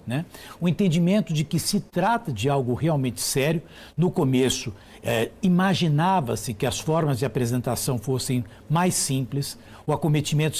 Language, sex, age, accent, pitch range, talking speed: Portuguese, male, 60-79, Brazilian, 130-195 Hz, 140 wpm